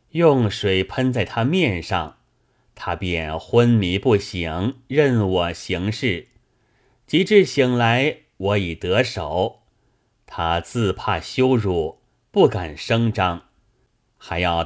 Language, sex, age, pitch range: Chinese, male, 30-49, 95-125 Hz